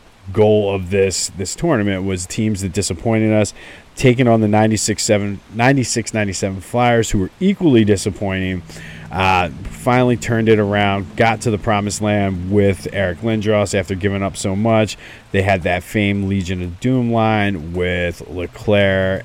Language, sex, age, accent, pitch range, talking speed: English, male, 30-49, American, 95-110 Hz, 145 wpm